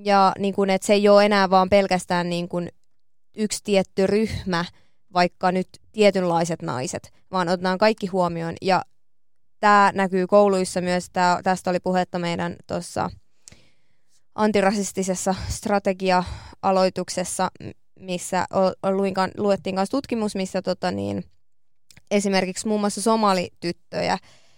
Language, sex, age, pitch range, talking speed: Finnish, female, 20-39, 180-200 Hz, 115 wpm